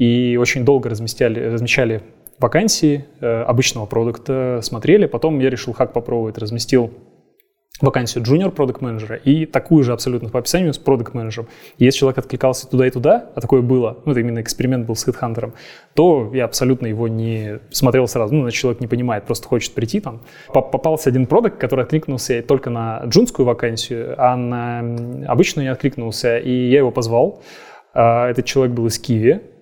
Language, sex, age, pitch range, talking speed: Russian, male, 20-39, 120-135 Hz, 160 wpm